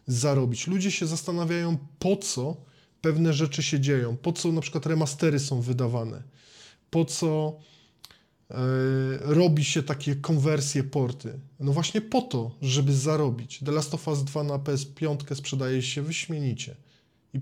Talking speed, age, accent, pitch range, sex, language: 145 wpm, 20-39, native, 125-150 Hz, male, Polish